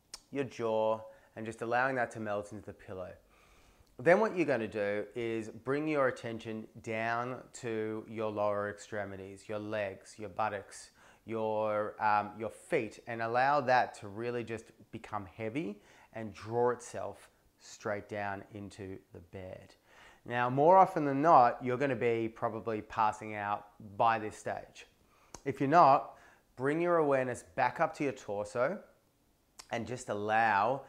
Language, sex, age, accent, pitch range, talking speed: English, male, 30-49, Australian, 105-125 Hz, 150 wpm